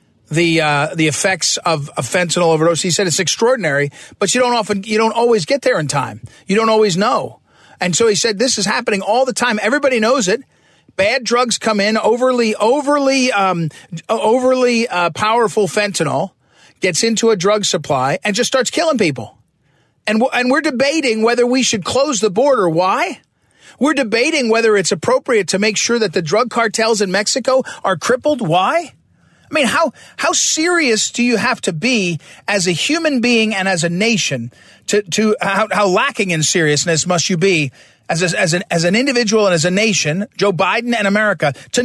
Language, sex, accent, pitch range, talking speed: English, male, American, 180-245 Hz, 190 wpm